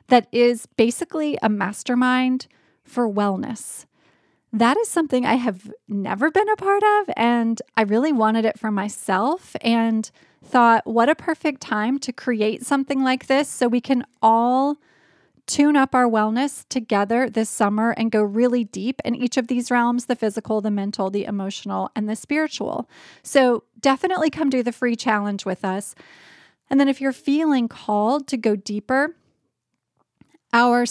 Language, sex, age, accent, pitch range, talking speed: English, female, 30-49, American, 220-270 Hz, 160 wpm